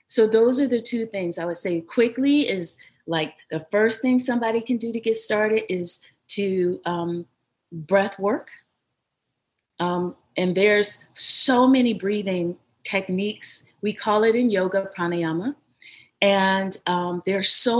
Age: 30-49